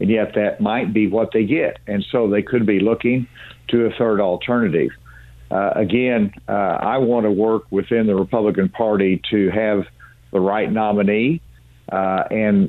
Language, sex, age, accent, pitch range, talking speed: English, male, 50-69, American, 95-115 Hz, 170 wpm